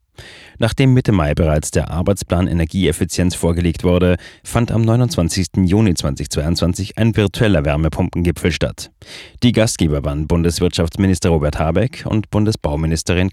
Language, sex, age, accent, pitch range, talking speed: German, male, 30-49, German, 85-105 Hz, 115 wpm